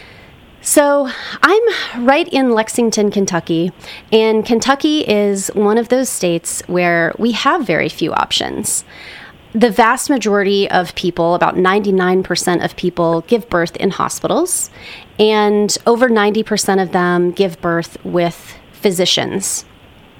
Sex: female